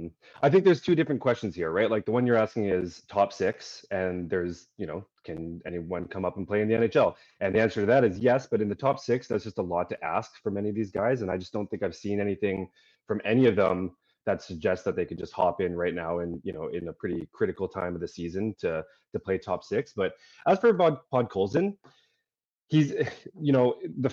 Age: 30-49